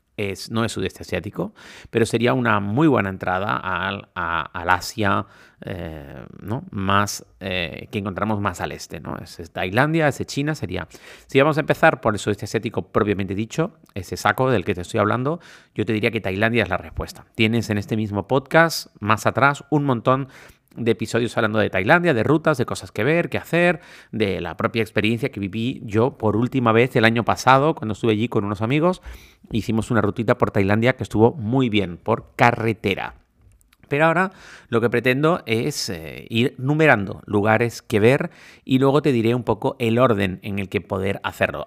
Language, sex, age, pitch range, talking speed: Spanish, male, 40-59, 100-125 Hz, 185 wpm